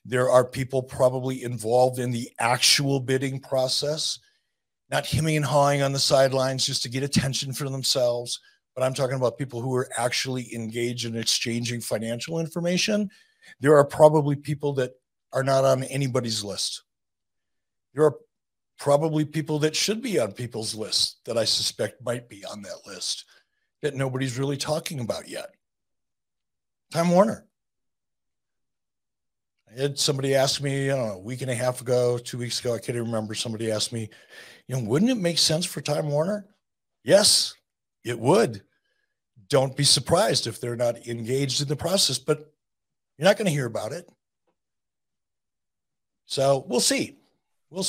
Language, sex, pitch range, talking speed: English, male, 125-155 Hz, 165 wpm